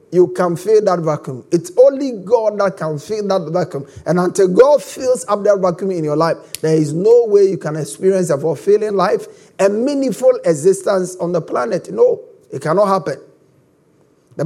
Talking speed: 185 wpm